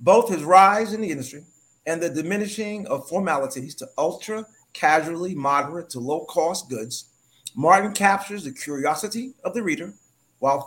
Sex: male